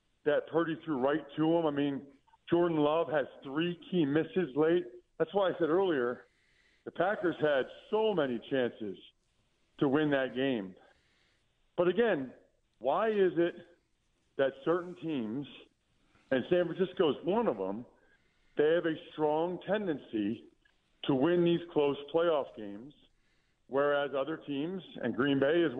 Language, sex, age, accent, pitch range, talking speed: English, male, 50-69, American, 140-175 Hz, 145 wpm